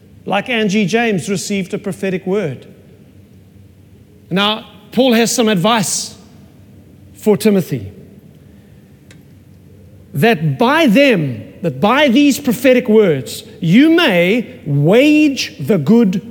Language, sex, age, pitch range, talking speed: English, male, 40-59, 145-225 Hz, 100 wpm